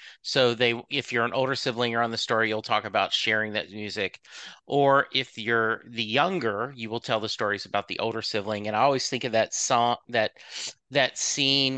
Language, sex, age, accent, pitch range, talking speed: English, male, 40-59, American, 120-160 Hz, 210 wpm